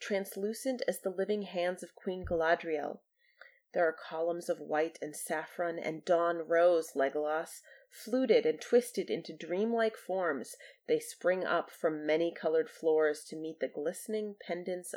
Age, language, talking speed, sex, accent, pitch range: 30-49, English, 150 wpm, female, American, 165-220 Hz